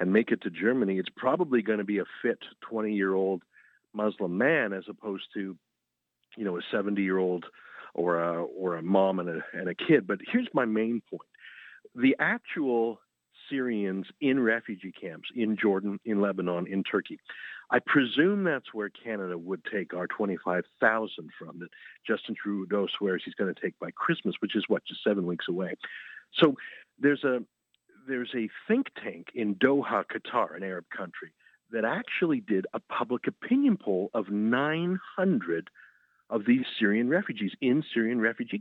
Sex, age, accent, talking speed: male, 50-69, American, 170 wpm